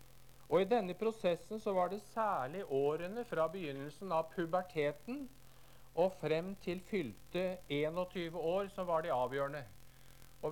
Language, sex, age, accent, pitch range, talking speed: Danish, male, 50-69, Norwegian, 130-190 Hz, 135 wpm